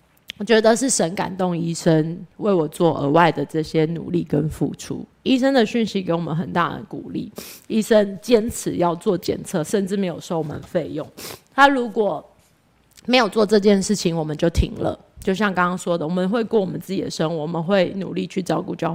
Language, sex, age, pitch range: Chinese, female, 20-39, 165-215 Hz